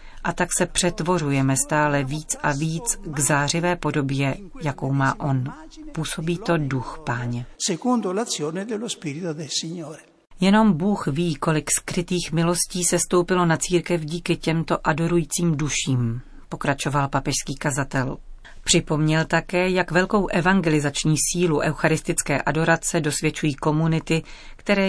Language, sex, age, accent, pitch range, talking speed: Czech, female, 40-59, native, 145-175 Hz, 110 wpm